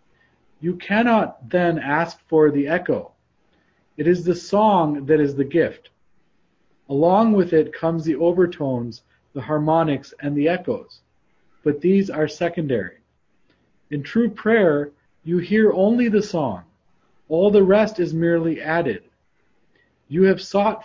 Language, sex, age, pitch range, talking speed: English, male, 40-59, 150-190 Hz, 135 wpm